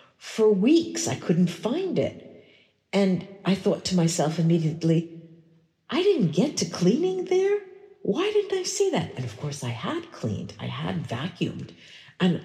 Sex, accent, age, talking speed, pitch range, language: female, American, 50-69, 160 wpm, 135-185 Hz, English